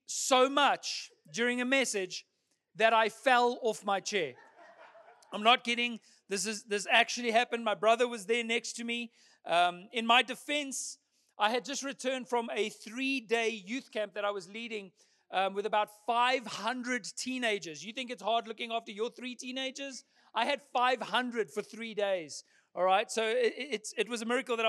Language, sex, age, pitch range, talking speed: English, male, 40-59, 195-240 Hz, 175 wpm